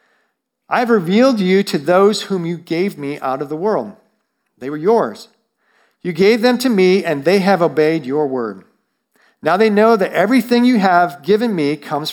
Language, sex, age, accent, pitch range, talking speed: English, male, 50-69, American, 140-195 Hz, 190 wpm